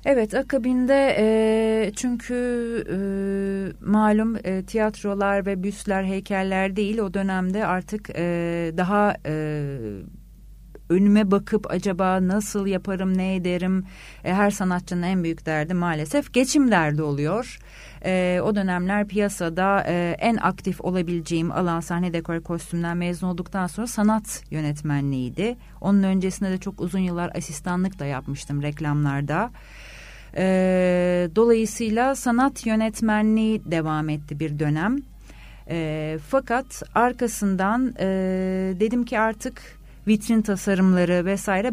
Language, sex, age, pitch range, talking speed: Turkish, female, 40-59, 175-215 Hz, 115 wpm